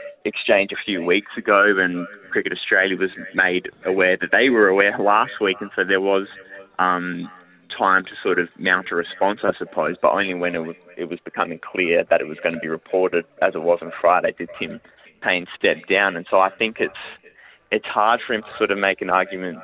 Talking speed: 220 wpm